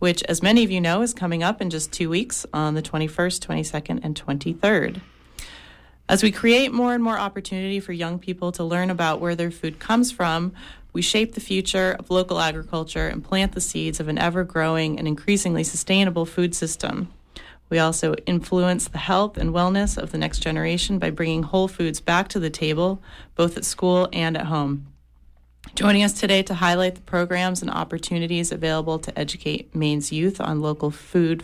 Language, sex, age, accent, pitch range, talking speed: English, female, 30-49, American, 160-190 Hz, 185 wpm